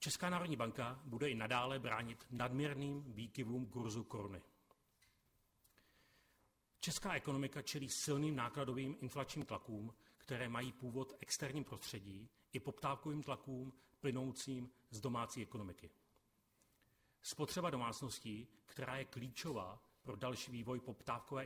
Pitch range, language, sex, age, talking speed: 110-140 Hz, Czech, male, 40-59, 110 wpm